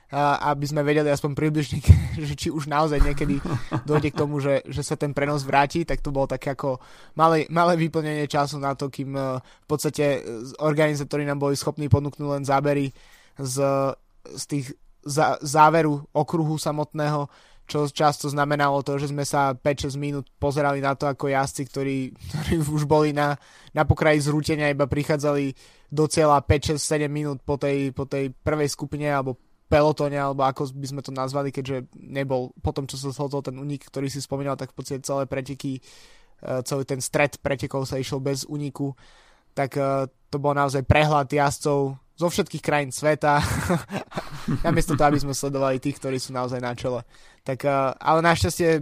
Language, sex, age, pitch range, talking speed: Slovak, male, 20-39, 135-150 Hz, 165 wpm